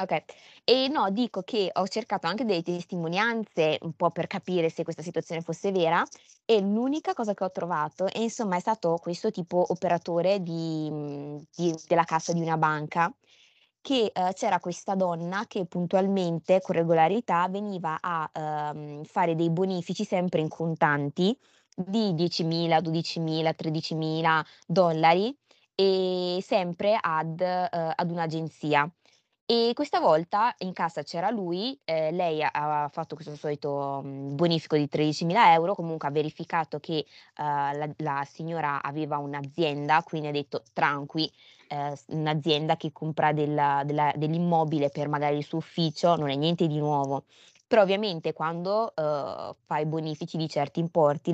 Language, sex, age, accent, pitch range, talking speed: Italian, female, 20-39, native, 150-180 Hz, 145 wpm